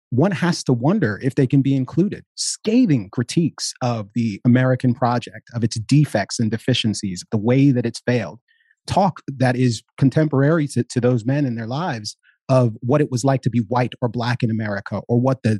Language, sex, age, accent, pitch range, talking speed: English, male, 30-49, American, 115-145 Hz, 195 wpm